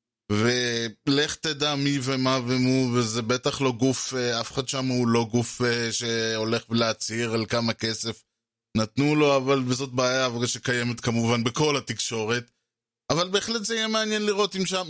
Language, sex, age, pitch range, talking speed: Hebrew, male, 20-39, 115-145 Hz, 145 wpm